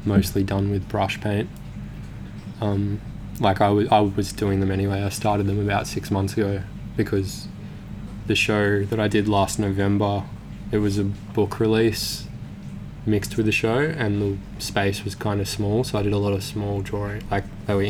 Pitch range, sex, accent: 100-105 Hz, male, Australian